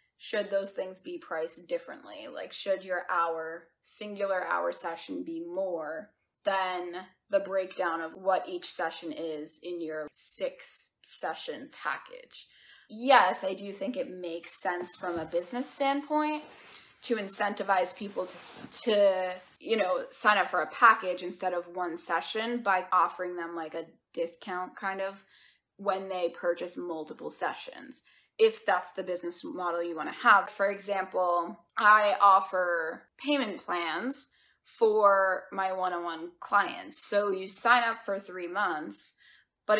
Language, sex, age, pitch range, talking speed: English, female, 20-39, 175-220 Hz, 140 wpm